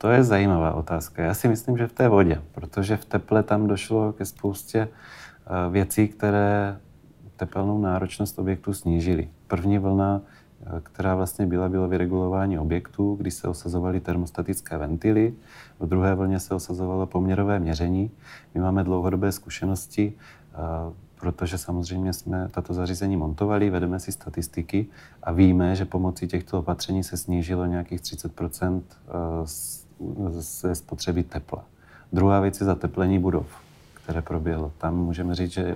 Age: 30-49